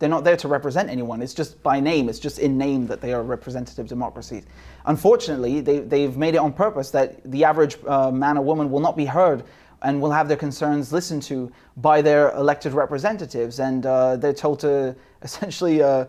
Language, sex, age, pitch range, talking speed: English, male, 30-49, 140-175 Hz, 200 wpm